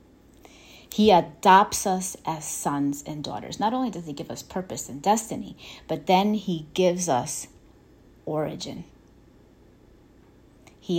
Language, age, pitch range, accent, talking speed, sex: English, 30-49, 155-190 Hz, American, 125 wpm, female